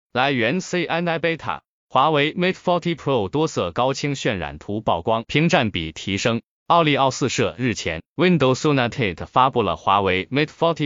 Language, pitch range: Chinese, 100-160 Hz